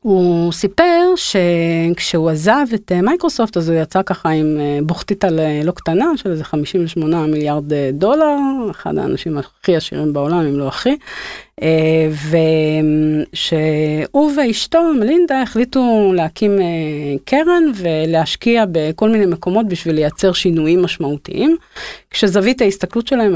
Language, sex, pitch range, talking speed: Hebrew, female, 160-215 Hz, 115 wpm